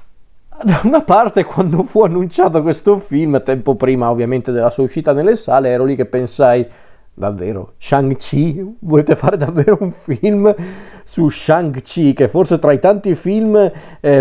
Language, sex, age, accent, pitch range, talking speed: Italian, male, 40-59, native, 130-170 Hz, 150 wpm